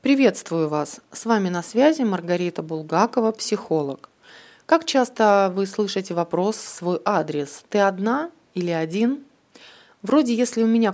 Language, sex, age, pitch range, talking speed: Russian, female, 20-39, 175-225 Hz, 150 wpm